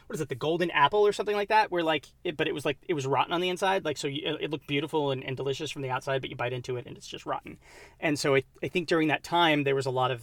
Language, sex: English, male